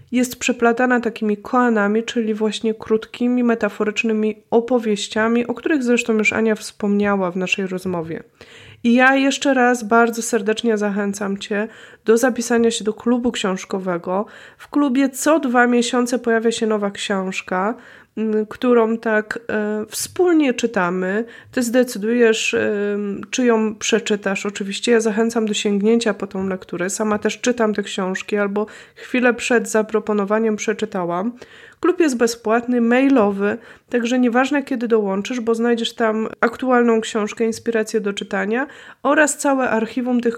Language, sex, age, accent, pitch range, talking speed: Polish, female, 20-39, native, 210-245 Hz, 135 wpm